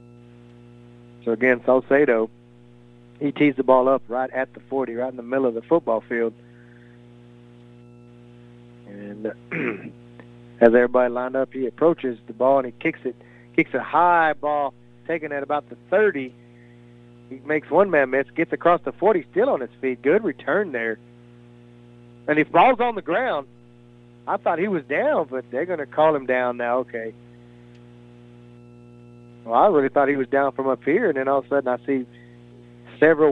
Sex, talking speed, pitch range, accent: male, 175 wpm, 120-135 Hz, American